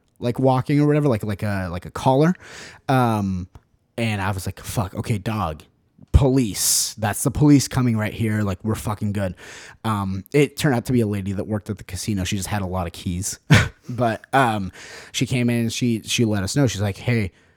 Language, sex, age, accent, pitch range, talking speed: English, male, 20-39, American, 100-130 Hz, 215 wpm